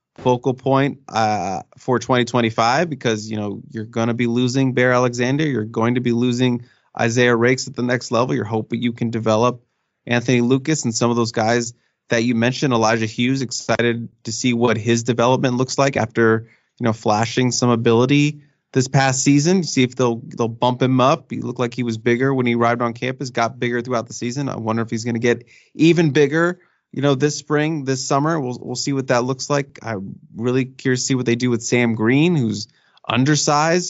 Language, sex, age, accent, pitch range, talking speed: English, male, 20-39, American, 115-130 Hz, 210 wpm